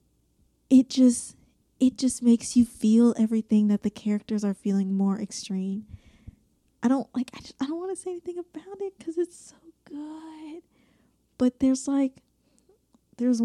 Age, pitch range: 20-39, 205-245 Hz